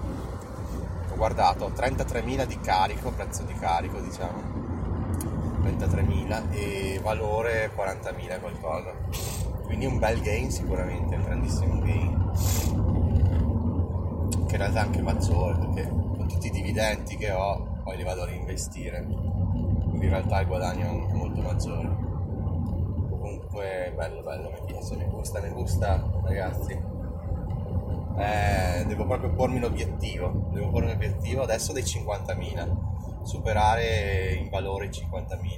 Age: 30-49